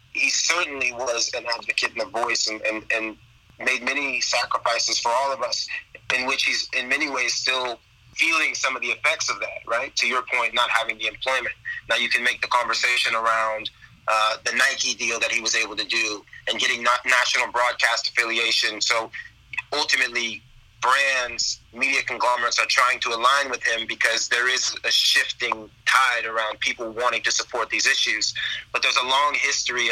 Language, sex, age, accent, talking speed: English, male, 30-49, American, 185 wpm